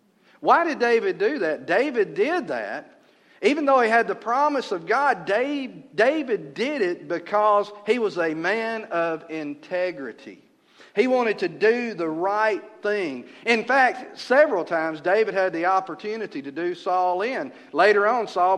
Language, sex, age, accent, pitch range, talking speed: English, male, 50-69, American, 155-225 Hz, 155 wpm